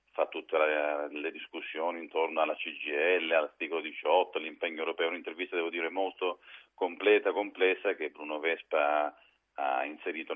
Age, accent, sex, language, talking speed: 40-59, native, male, Italian, 130 wpm